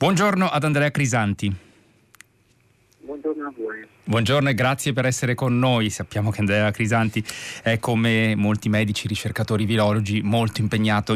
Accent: native